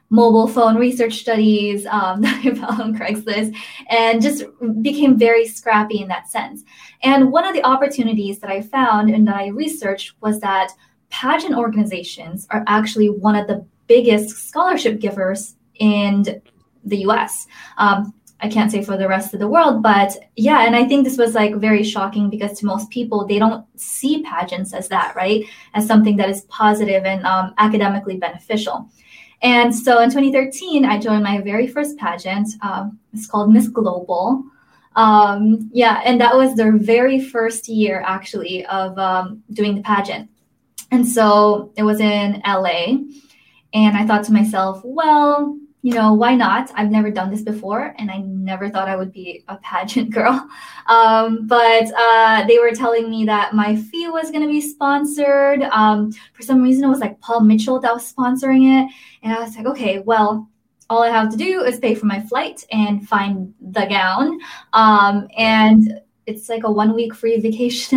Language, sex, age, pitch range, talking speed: English, female, 20-39, 205-245 Hz, 180 wpm